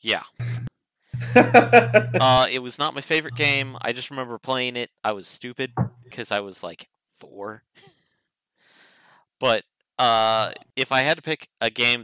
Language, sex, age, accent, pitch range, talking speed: English, male, 40-59, American, 105-130 Hz, 150 wpm